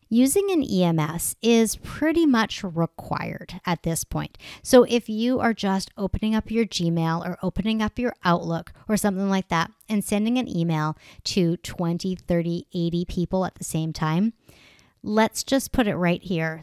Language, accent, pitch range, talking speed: English, American, 170-215 Hz, 170 wpm